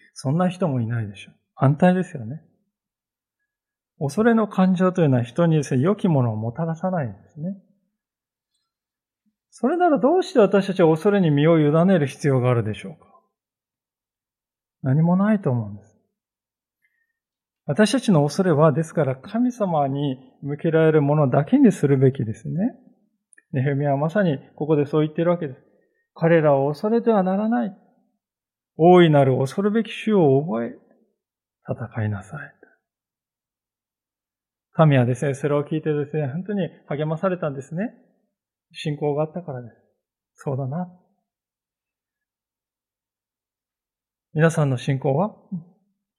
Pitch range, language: 140-195 Hz, Japanese